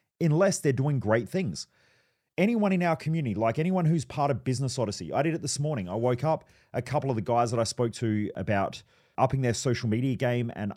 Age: 30-49